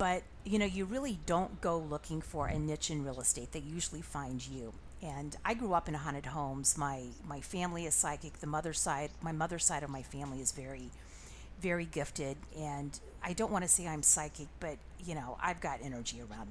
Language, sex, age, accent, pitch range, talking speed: English, female, 40-59, American, 140-190 Hz, 210 wpm